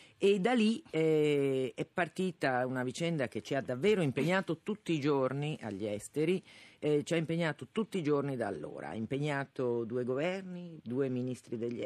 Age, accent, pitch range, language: 40-59, native, 110-155 Hz, Italian